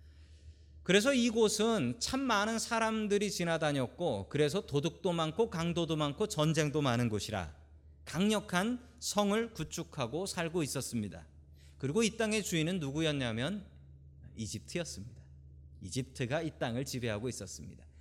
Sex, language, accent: male, Korean, native